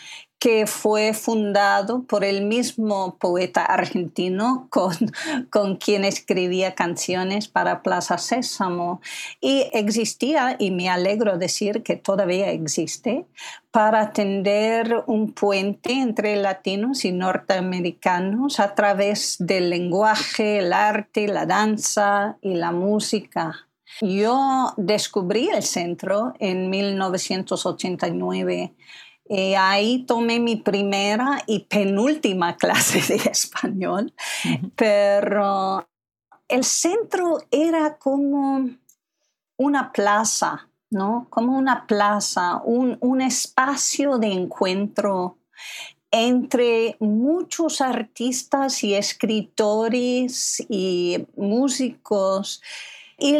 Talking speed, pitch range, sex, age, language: 95 wpm, 195-255 Hz, female, 50-69, Spanish